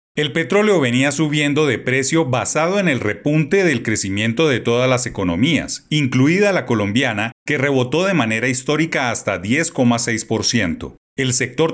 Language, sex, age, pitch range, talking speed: Spanish, male, 40-59, 115-155 Hz, 145 wpm